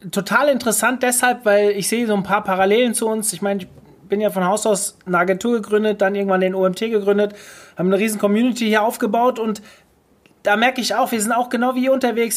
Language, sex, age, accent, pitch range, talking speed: German, male, 30-49, German, 200-235 Hz, 225 wpm